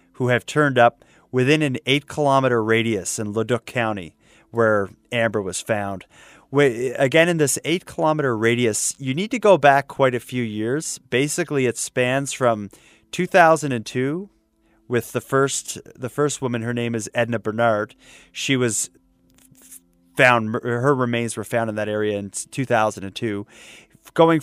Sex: male